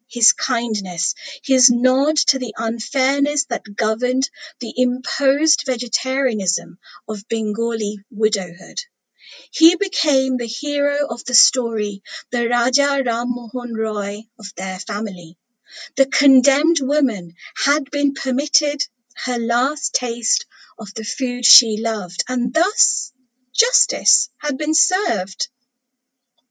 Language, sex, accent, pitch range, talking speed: Hindi, female, British, 215-270 Hz, 115 wpm